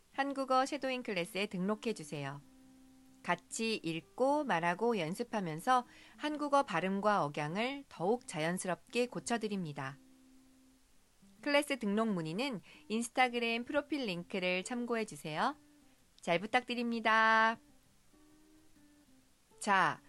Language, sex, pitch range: Korean, female, 180-270 Hz